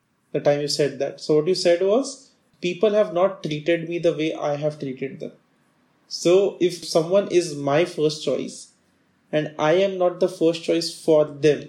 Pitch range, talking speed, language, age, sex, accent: 145-175 Hz, 190 wpm, English, 20-39, male, Indian